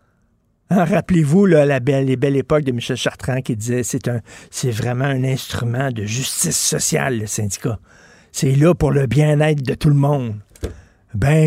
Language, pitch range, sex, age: French, 135-170 Hz, male, 50-69